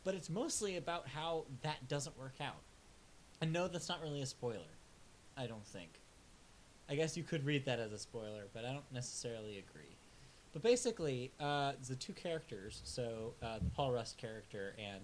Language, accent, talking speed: English, American, 185 wpm